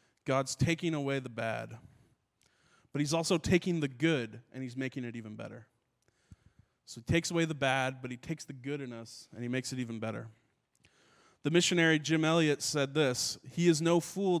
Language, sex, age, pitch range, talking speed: English, male, 20-39, 120-145 Hz, 190 wpm